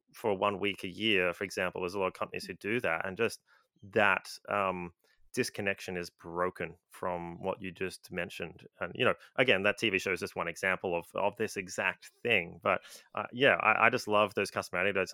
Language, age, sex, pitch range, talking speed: English, 20-39, male, 95-110 Hz, 210 wpm